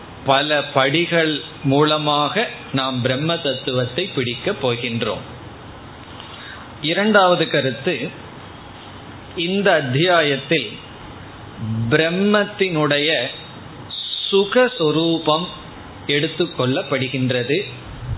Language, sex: Tamil, male